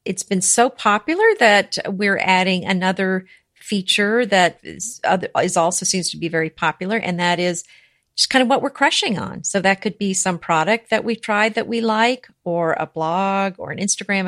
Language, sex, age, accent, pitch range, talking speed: English, female, 50-69, American, 170-220 Hz, 200 wpm